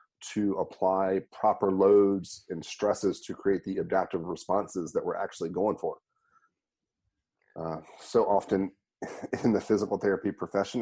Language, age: English, 30-49